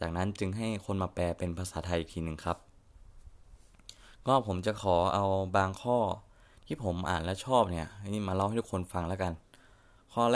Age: 20-39